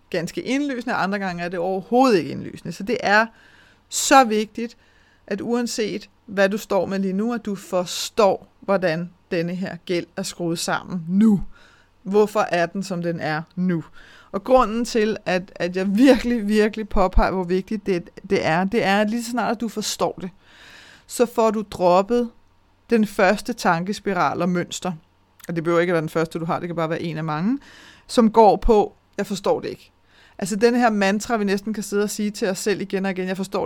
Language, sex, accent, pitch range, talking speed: Danish, female, native, 180-220 Hz, 205 wpm